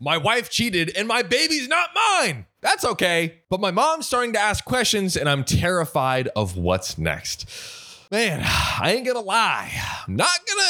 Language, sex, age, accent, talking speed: English, male, 20-39, American, 175 wpm